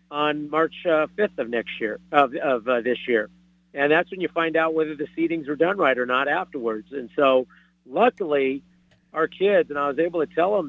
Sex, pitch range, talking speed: male, 135-170 Hz, 220 wpm